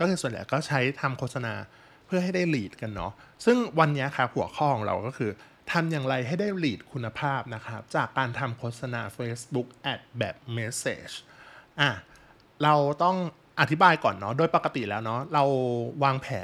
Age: 20-39